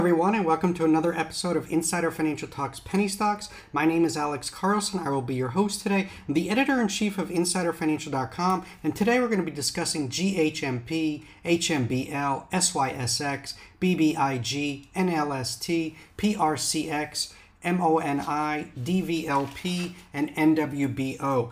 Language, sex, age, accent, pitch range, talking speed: English, male, 40-59, American, 150-190 Hz, 130 wpm